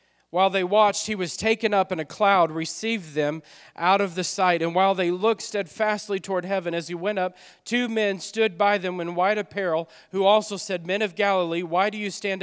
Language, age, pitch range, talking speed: English, 40-59, 185-220 Hz, 215 wpm